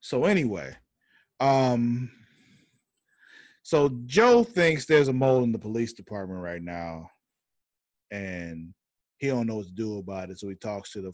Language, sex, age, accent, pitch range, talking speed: English, male, 20-39, American, 100-140 Hz, 155 wpm